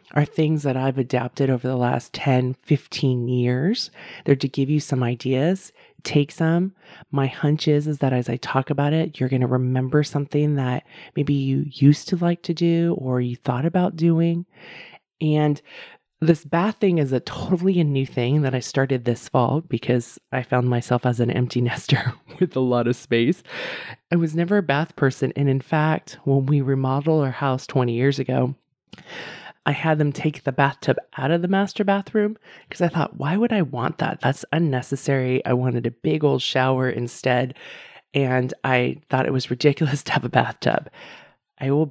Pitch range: 125-155 Hz